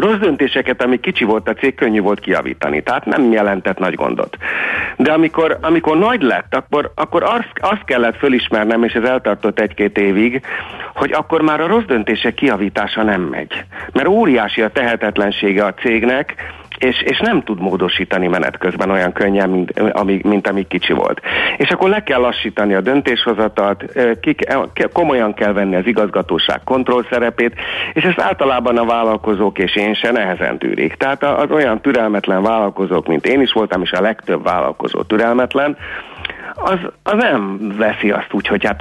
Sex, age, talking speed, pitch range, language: male, 50-69, 165 wpm, 100-125 Hz, Hungarian